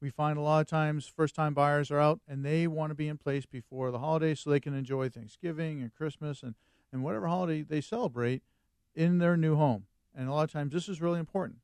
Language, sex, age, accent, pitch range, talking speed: English, male, 40-59, American, 135-165 Hz, 235 wpm